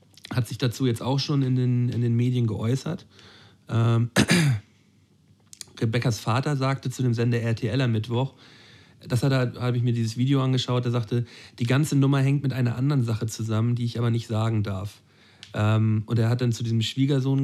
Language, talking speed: German, 185 wpm